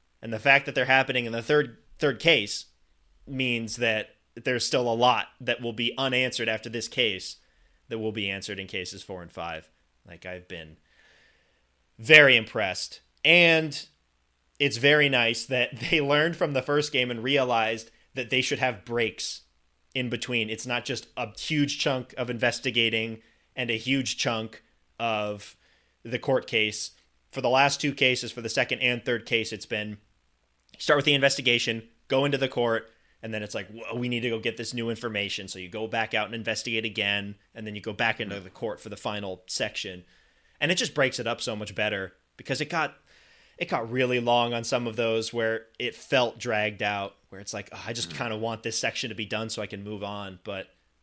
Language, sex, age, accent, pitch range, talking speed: English, male, 20-39, American, 100-125 Hz, 200 wpm